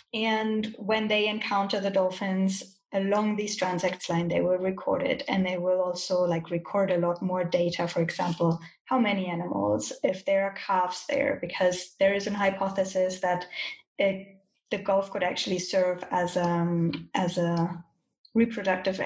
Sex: female